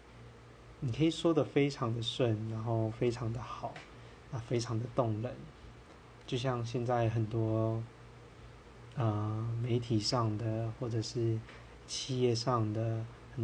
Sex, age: male, 20-39